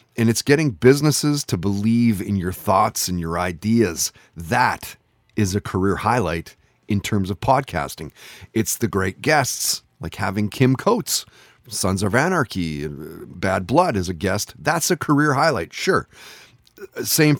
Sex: male